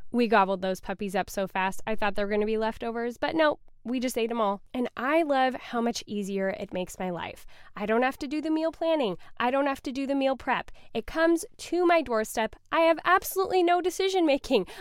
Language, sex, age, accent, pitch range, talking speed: English, female, 10-29, American, 210-275 Hz, 230 wpm